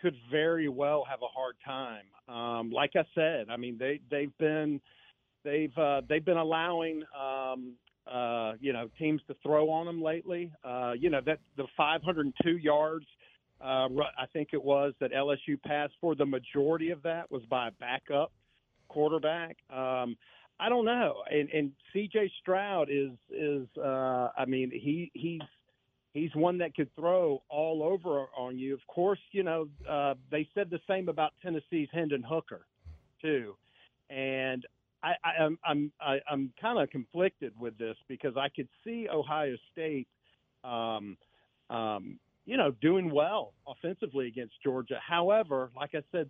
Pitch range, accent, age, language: 130-165 Hz, American, 50-69, English